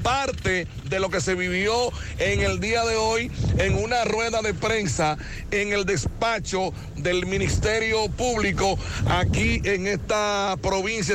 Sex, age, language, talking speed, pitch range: male, 60-79, Spanish, 140 wpm, 180-220 Hz